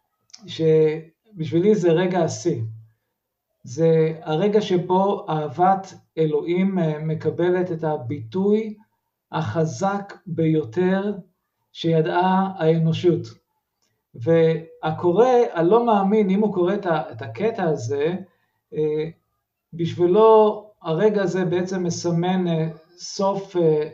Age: 50-69